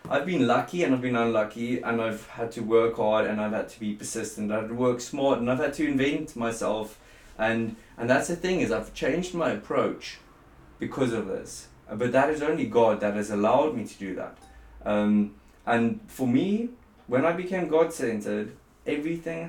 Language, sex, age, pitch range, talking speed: English, male, 20-39, 110-135 Hz, 190 wpm